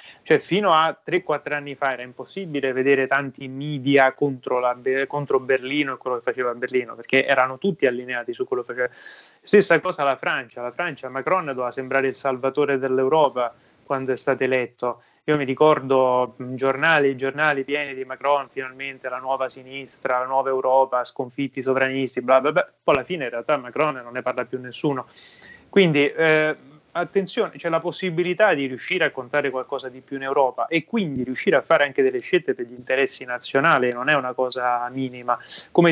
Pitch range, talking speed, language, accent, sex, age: 130-150 Hz, 180 wpm, Italian, native, male, 20-39